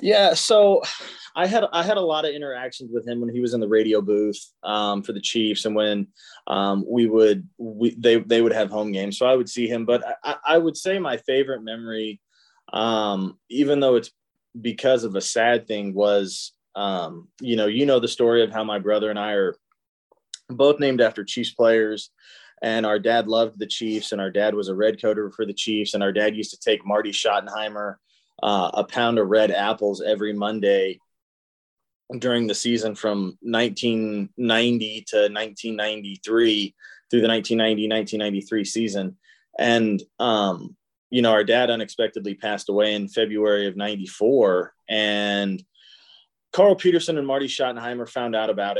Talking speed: 175 wpm